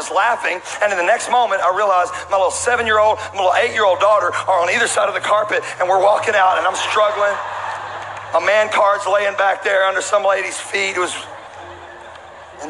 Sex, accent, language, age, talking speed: male, American, English, 40-59, 200 wpm